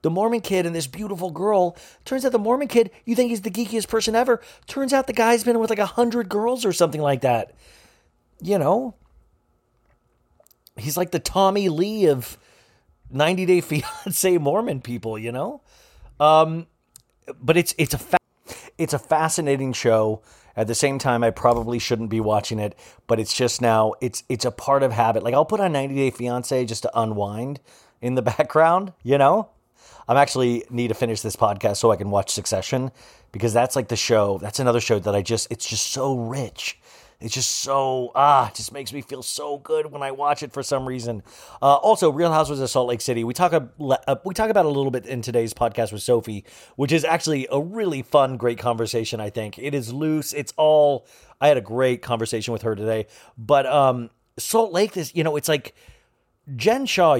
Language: English